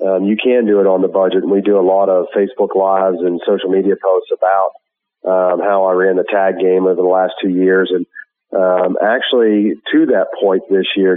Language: English